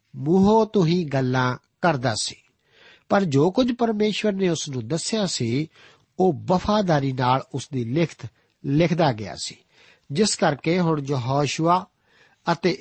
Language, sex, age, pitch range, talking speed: Punjabi, male, 60-79, 140-190 Hz, 135 wpm